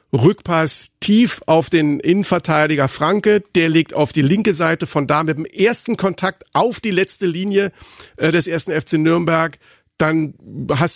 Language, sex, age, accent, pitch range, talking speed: German, male, 50-69, German, 140-185 Hz, 155 wpm